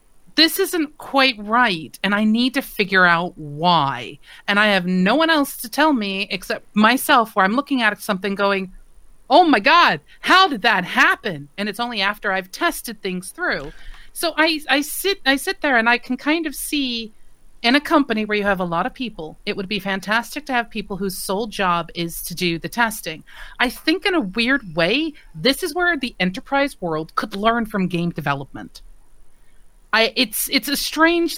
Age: 40-59